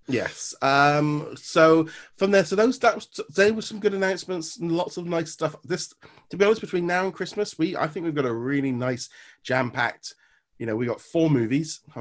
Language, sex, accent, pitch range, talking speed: English, male, British, 115-160 Hz, 215 wpm